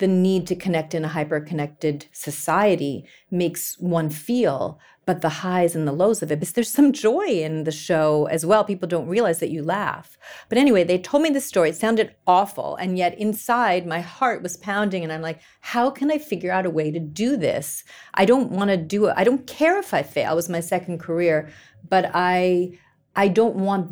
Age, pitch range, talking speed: 40-59, 170-215 Hz, 215 wpm